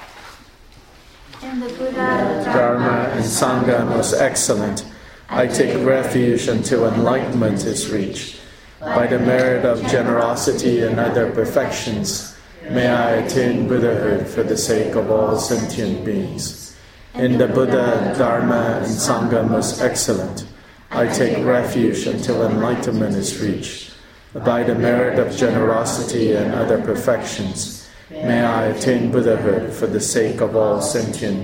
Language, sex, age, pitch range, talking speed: English, male, 40-59, 110-125 Hz, 130 wpm